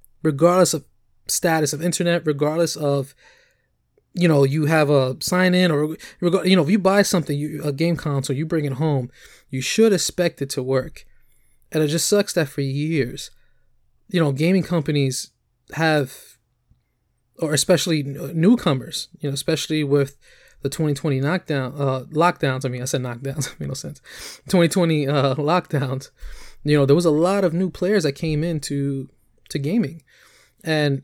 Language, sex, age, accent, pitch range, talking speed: English, male, 20-39, American, 140-175 Hz, 165 wpm